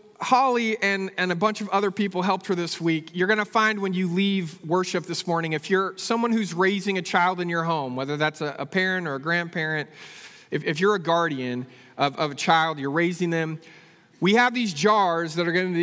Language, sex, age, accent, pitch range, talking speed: English, male, 40-59, American, 150-190 Hz, 230 wpm